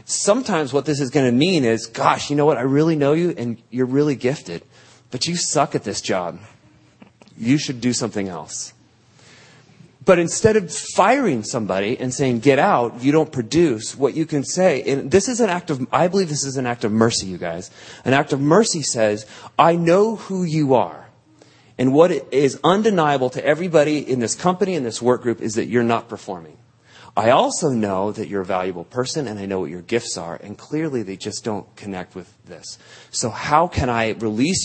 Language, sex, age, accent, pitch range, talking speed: English, male, 30-49, American, 110-145 Hz, 205 wpm